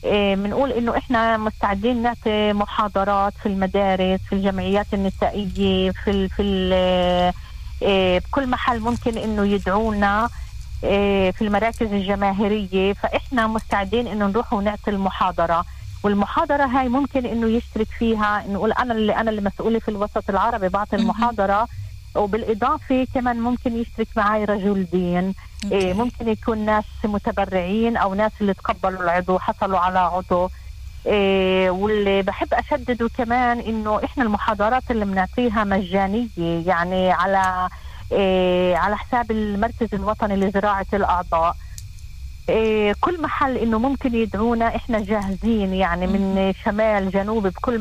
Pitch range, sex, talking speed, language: 190-225 Hz, female, 115 wpm, Hebrew